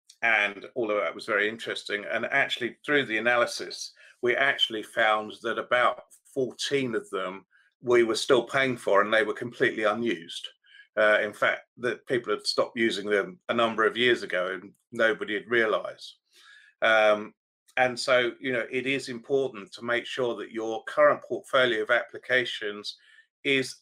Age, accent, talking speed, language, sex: 40-59, British, 165 wpm, English, male